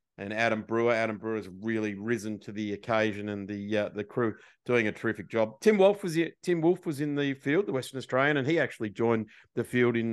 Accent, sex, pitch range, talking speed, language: Australian, male, 105-125 Hz, 235 wpm, English